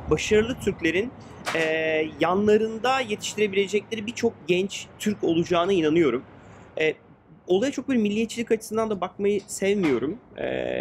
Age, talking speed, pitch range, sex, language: 30-49, 110 wpm, 155-210 Hz, male, Turkish